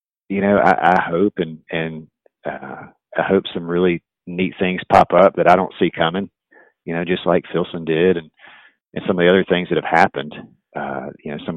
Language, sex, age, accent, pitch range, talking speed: English, male, 40-59, American, 80-95 Hz, 215 wpm